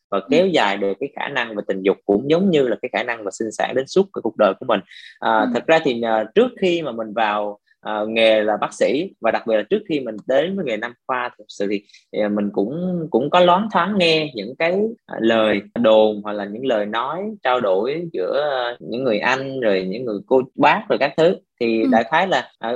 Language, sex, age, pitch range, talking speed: Vietnamese, male, 20-39, 105-135 Hz, 245 wpm